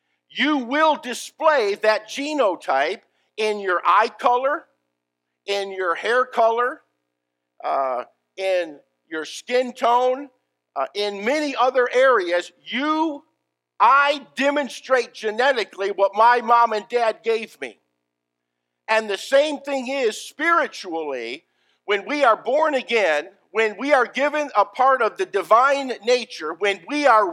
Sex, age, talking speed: male, 50-69, 125 wpm